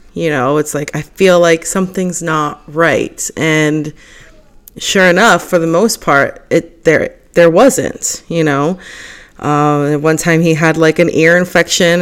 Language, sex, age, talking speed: English, female, 30-49, 160 wpm